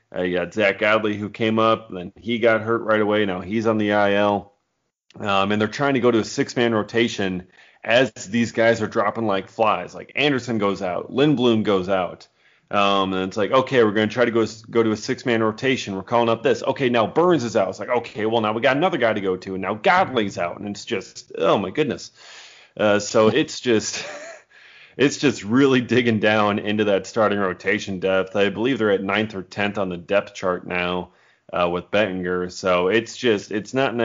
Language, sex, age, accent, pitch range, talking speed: English, male, 30-49, American, 95-115 Hz, 220 wpm